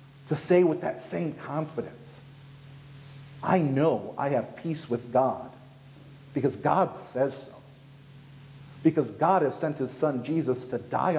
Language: English